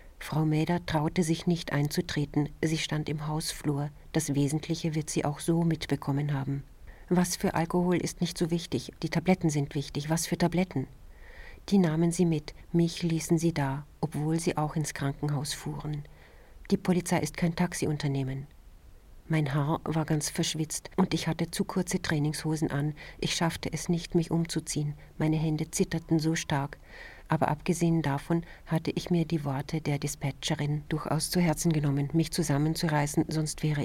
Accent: German